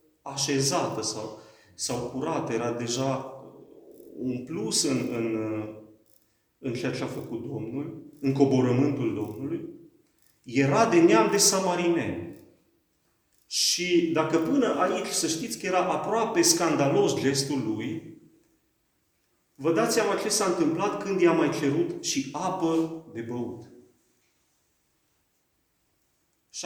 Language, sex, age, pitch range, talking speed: Romanian, male, 30-49, 135-185 Hz, 115 wpm